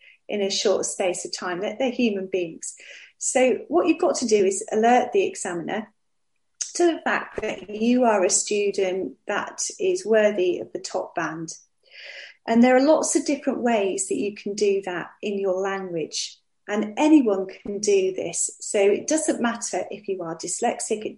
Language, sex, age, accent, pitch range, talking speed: English, female, 30-49, British, 200-295 Hz, 180 wpm